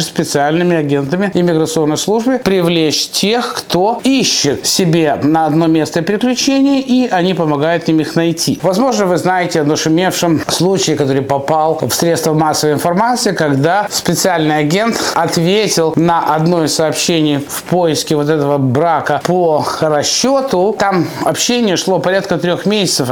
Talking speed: 135 wpm